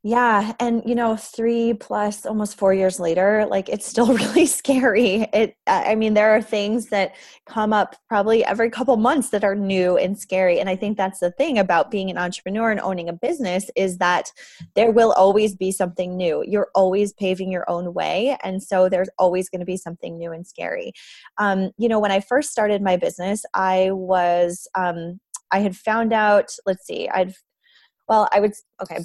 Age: 20-39